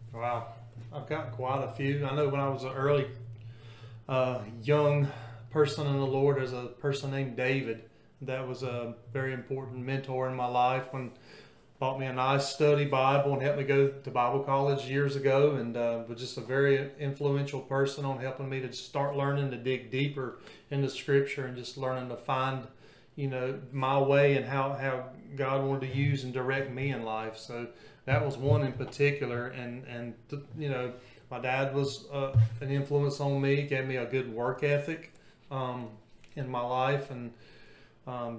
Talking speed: 190 wpm